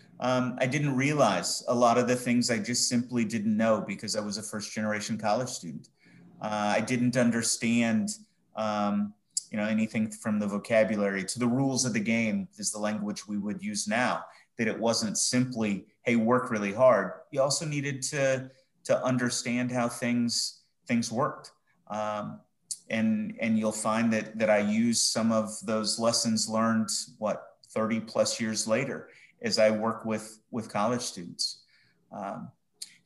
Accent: American